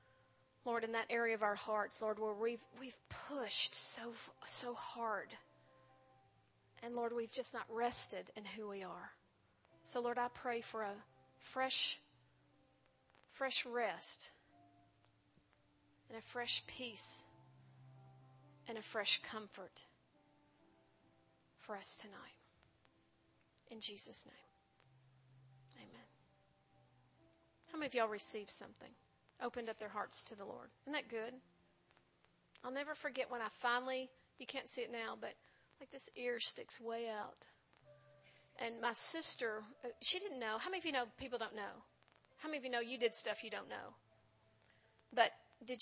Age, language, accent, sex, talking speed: 40-59, English, American, female, 145 wpm